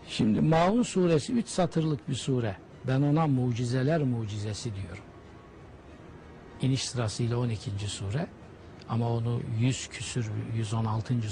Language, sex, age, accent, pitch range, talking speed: Turkish, male, 60-79, native, 115-160 Hz, 110 wpm